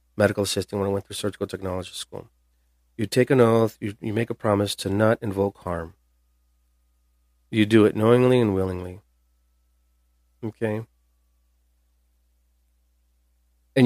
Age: 40-59